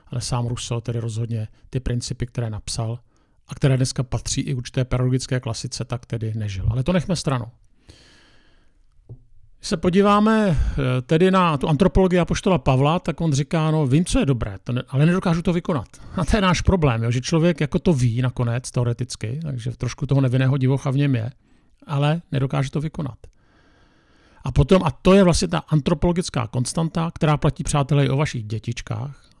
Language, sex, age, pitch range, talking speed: Czech, male, 50-69, 120-150 Hz, 180 wpm